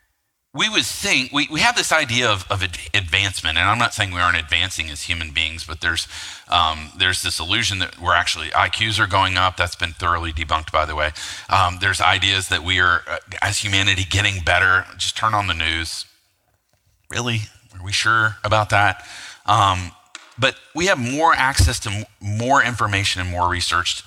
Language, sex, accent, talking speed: English, male, American, 185 wpm